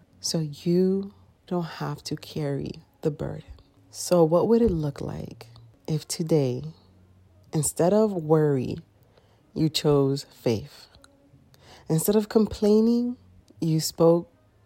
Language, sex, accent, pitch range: English, female, American, 125-180 Hz